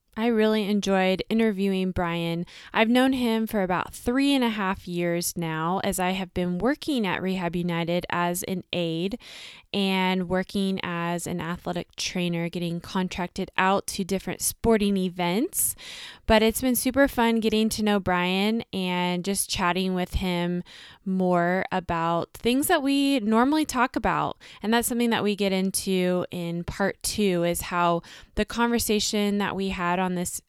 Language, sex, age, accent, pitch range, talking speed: English, female, 20-39, American, 180-220 Hz, 160 wpm